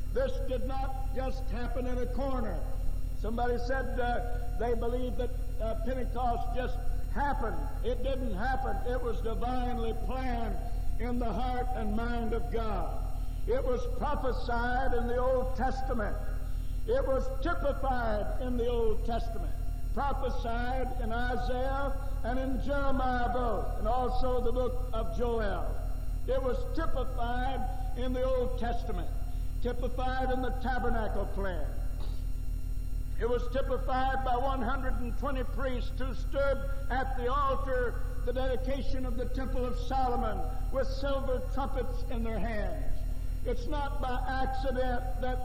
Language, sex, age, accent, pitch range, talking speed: English, male, 60-79, American, 240-270 Hz, 130 wpm